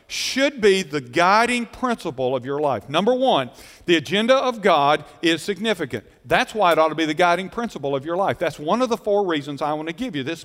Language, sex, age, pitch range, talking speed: English, male, 50-69, 160-225 Hz, 230 wpm